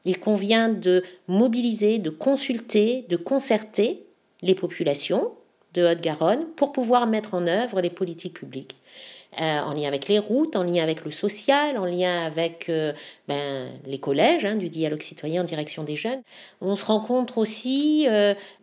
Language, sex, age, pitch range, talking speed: French, female, 50-69, 170-215 Hz, 170 wpm